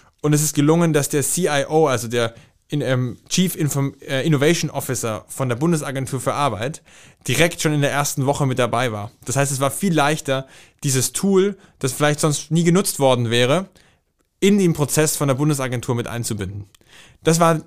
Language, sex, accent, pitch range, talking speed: German, male, German, 130-160 Hz, 175 wpm